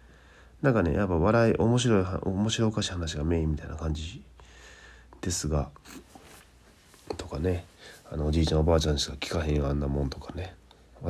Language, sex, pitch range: Japanese, male, 70-90 Hz